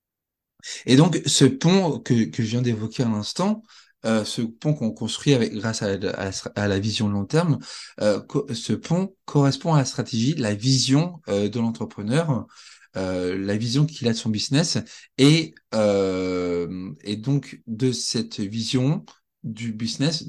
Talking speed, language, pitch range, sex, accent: 165 wpm, French, 105-140 Hz, male, French